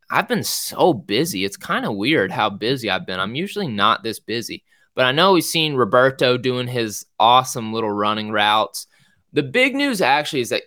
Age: 20-39